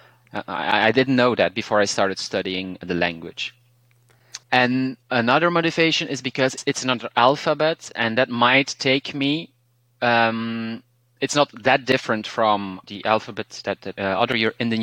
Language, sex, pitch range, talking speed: English, male, 110-130 Hz, 140 wpm